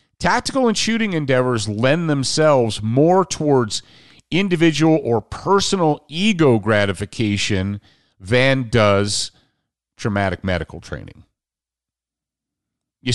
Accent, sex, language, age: American, male, English, 40-59